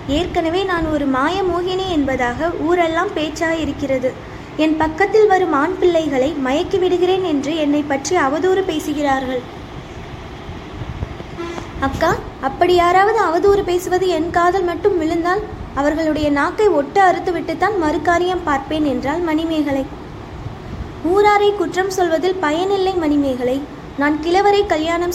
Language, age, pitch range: Tamil, 20-39, 300-370 Hz